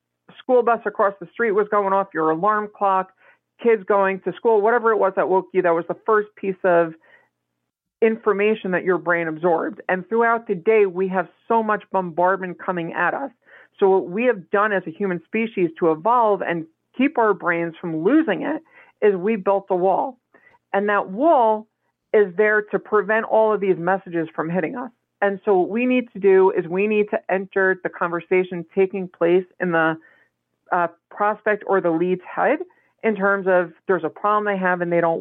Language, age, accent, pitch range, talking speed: English, 40-59, American, 175-215 Hz, 200 wpm